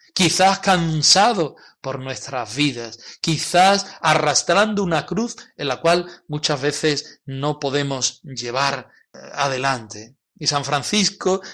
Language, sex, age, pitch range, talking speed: Spanish, male, 40-59, 130-180 Hz, 110 wpm